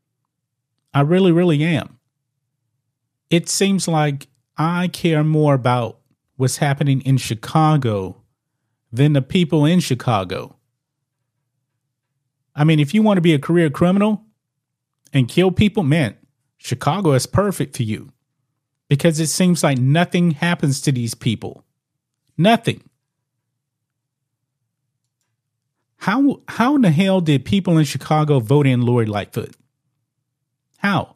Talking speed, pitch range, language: 120 wpm, 130-160 Hz, English